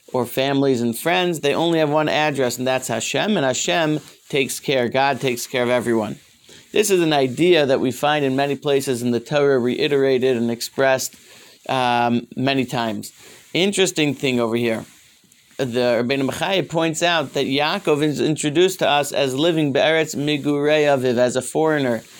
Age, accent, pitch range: 40-59, American, 130-150 Hz